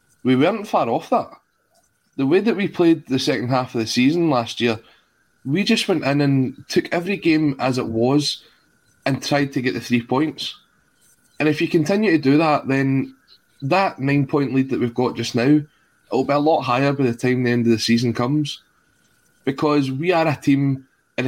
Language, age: English, 20-39